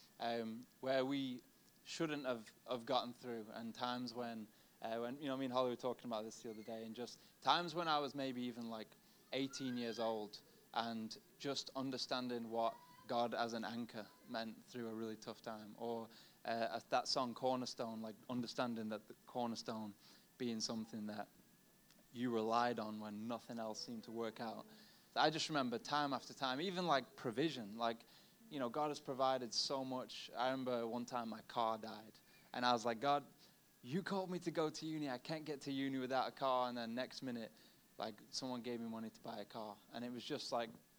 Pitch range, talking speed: 115-135 Hz, 200 wpm